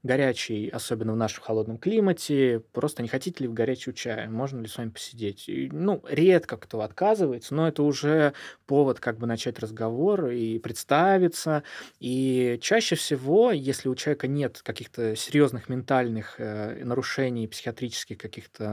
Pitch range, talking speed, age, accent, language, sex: 120-155 Hz, 150 wpm, 20-39, native, Russian, male